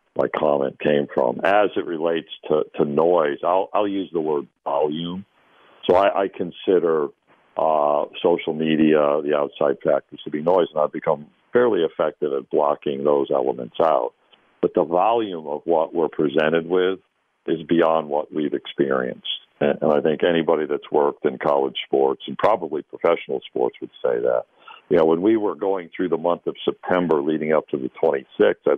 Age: 60-79